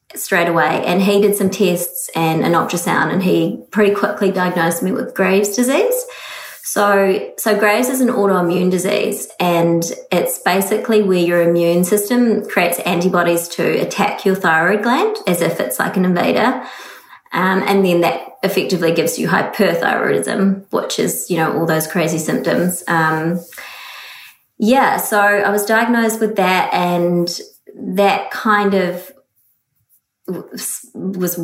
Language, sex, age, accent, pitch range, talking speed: English, female, 20-39, Australian, 175-220 Hz, 145 wpm